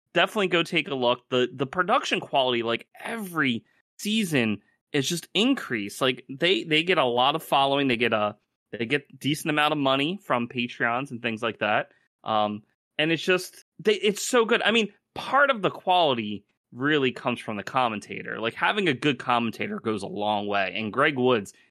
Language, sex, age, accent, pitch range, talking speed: English, male, 30-49, American, 115-170 Hz, 190 wpm